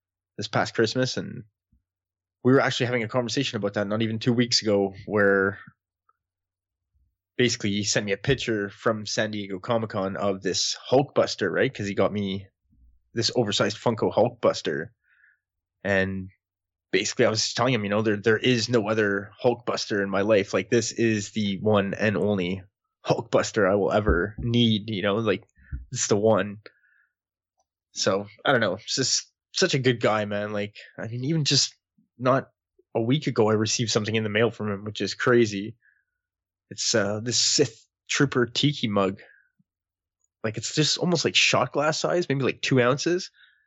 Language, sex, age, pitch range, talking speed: English, male, 20-39, 100-125 Hz, 170 wpm